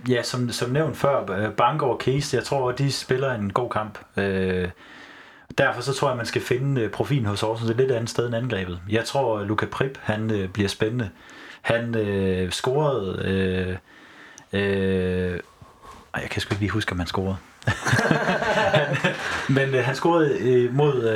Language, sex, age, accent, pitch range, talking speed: Danish, male, 30-49, native, 100-125 Hz, 160 wpm